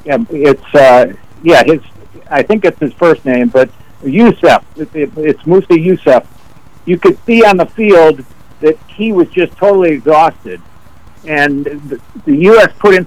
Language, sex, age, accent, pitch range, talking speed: English, male, 60-79, American, 140-175 Hz, 150 wpm